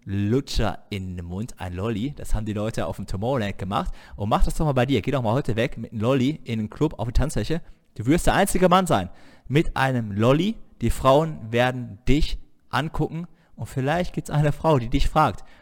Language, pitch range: German, 105-140 Hz